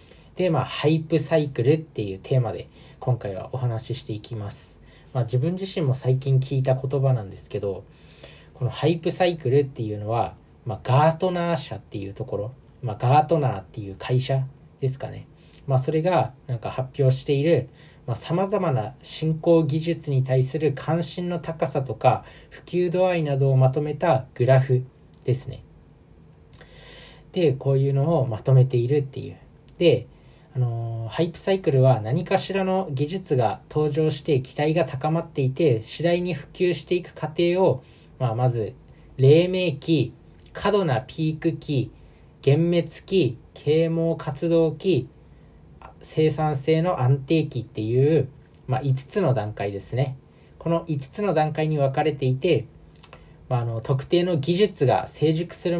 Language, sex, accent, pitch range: Japanese, male, native, 125-165 Hz